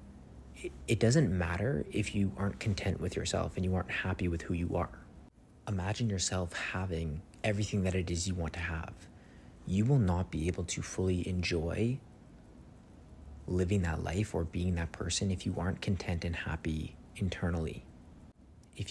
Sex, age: male, 30-49